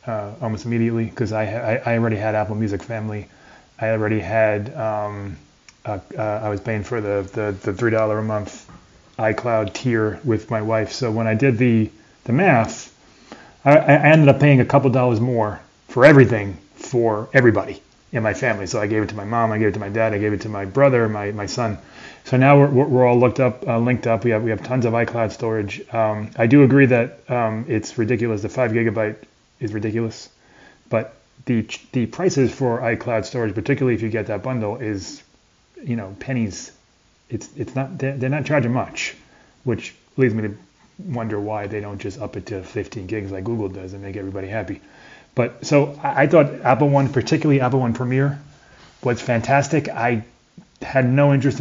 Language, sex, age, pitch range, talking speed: English, male, 30-49, 110-130 Hz, 200 wpm